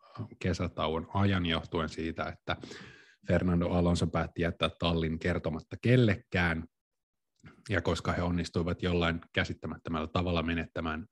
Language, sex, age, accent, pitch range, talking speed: Finnish, male, 30-49, native, 85-100 Hz, 110 wpm